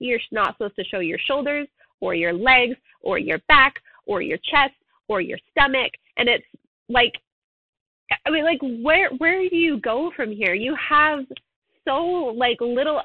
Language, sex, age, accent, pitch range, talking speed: English, female, 20-39, American, 220-295 Hz, 170 wpm